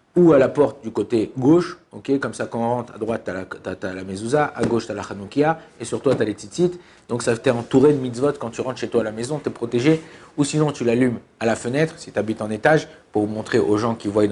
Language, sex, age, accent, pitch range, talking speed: French, male, 50-69, French, 110-145 Hz, 275 wpm